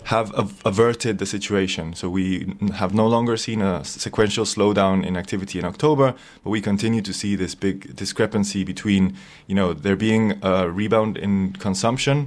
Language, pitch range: English, 95-110 Hz